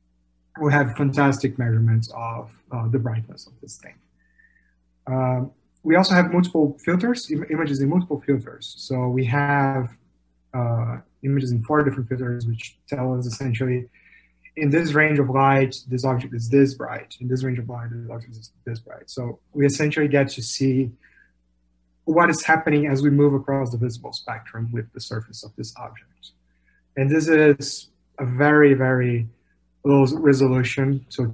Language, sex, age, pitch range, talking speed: English, male, 30-49, 115-145 Hz, 165 wpm